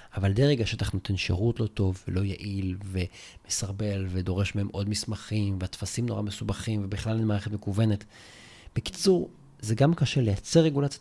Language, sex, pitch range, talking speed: Hebrew, male, 100-130 Hz, 145 wpm